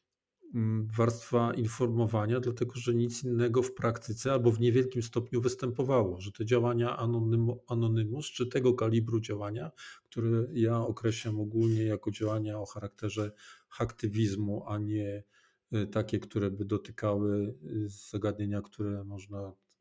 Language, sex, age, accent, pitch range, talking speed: Polish, male, 40-59, native, 105-120 Hz, 120 wpm